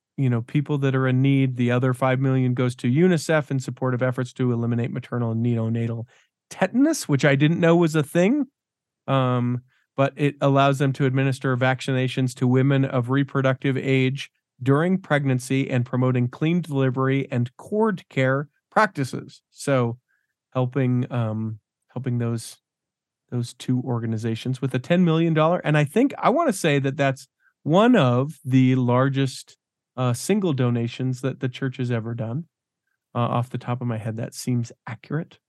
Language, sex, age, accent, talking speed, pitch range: English, male, 40-59, American, 165 wpm, 125-155 Hz